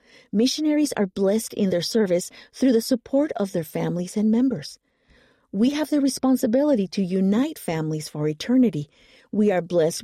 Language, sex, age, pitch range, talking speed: English, female, 50-69, 170-250 Hz, 155 wpm